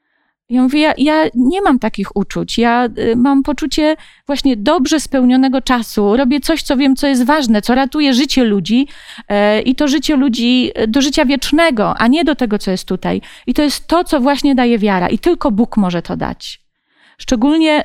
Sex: female